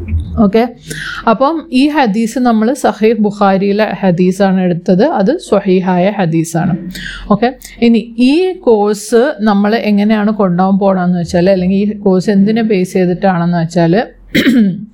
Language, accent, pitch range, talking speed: Malayalam, native, 185-225 Hz, 110 wpm